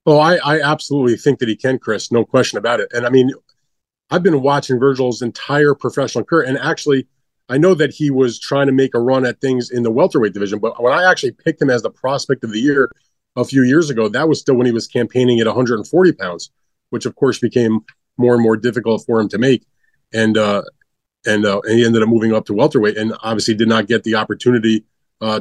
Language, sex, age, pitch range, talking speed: English, male, 30-49, 110-135 Hz, 235 wpm